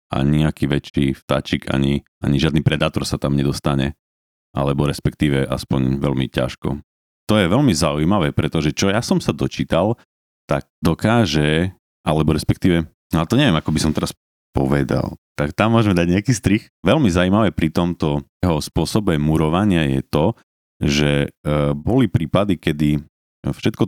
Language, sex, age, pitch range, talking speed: Slovak, male, 30-49, 70-90 Hz, 150 wpm